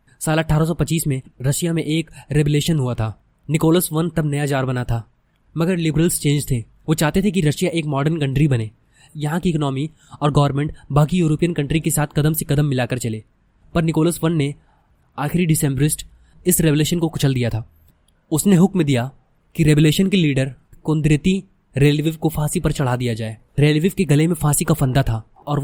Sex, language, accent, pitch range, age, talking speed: male, Hindi, native, 130-165 Hz, 20-39, 185 wpm